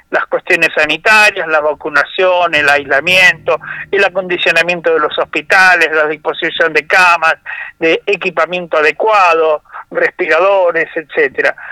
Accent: Argentinian